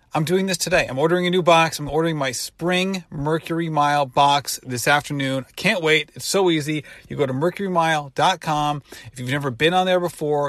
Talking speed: 195 wpm